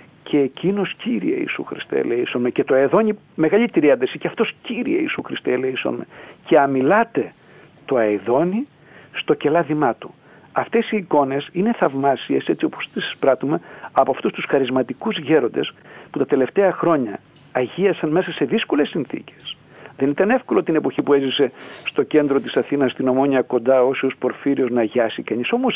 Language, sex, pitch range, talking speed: Greek, male, 135-220 Hz, 155 wpm